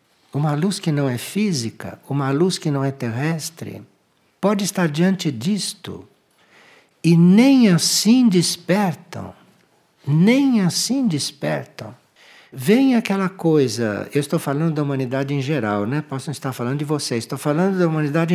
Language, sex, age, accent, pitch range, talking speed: Portuguese, male, 60-79, Brazilian, 135-185 Hz, 140 wpm